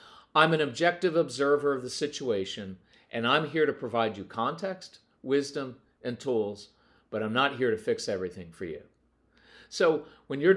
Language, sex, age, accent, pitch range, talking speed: English, male, 40-59, American, 145-210 Hz, 165 wpm